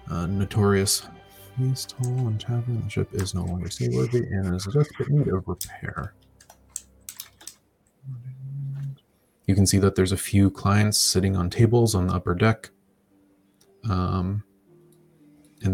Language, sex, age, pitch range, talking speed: English, male, 30-49, 90-110 Hz, 135 wpm